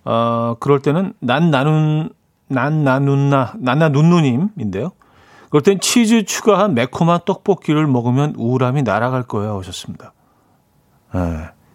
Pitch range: 120-165 Hz